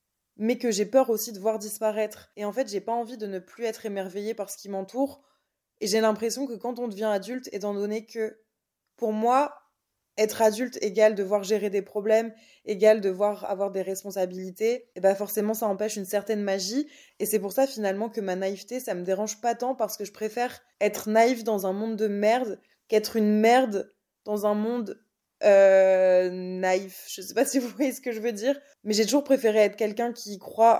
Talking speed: 210 wpm